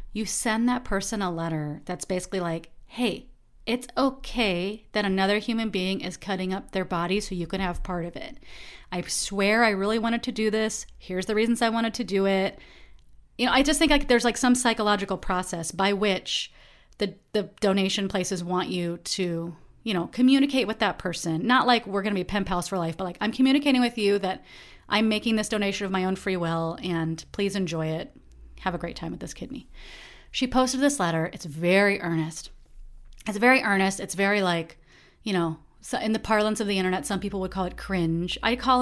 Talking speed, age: 210 wpm, 30-49